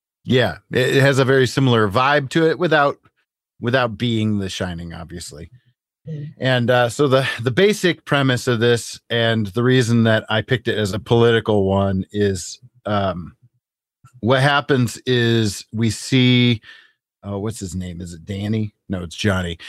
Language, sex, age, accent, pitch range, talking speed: English, male, 40-59, American, 105-135 Hz, 160 wpm